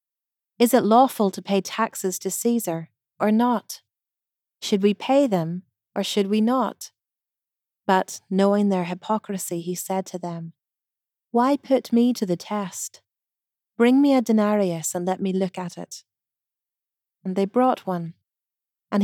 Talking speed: 150 wpm